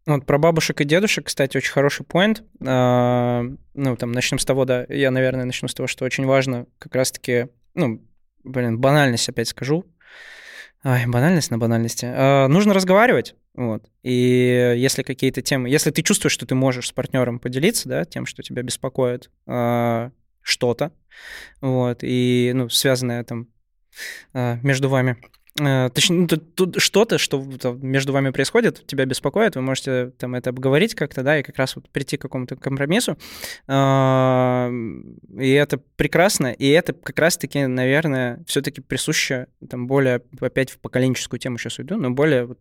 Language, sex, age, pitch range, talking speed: Russian, male, 20-39, 125-145 Hz, 160 wpm